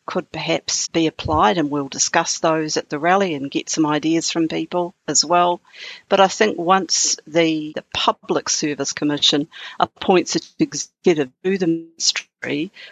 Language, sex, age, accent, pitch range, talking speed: English, female, 50-69, Australian, 150-175 Hz, 165 wpm